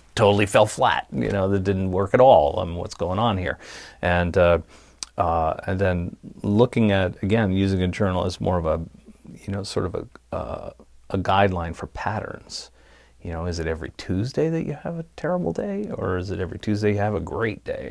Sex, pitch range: male, 85-100 Hz